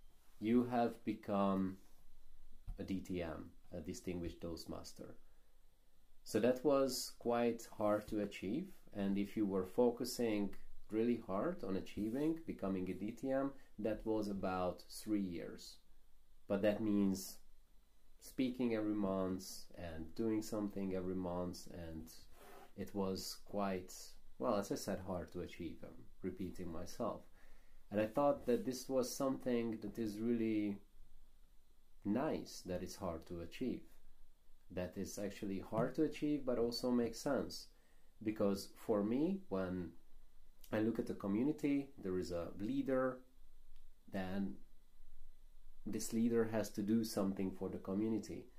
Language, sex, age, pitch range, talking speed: English, male, 30-49, 90-110 Hz, 130 wpm